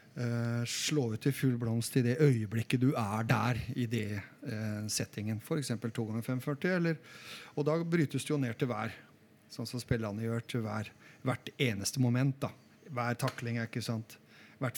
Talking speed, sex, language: 165 wpm, male, English